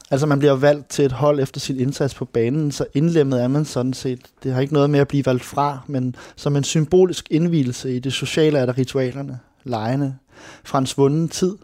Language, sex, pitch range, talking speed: Danish, male, 130-145 Hz, 215 wpm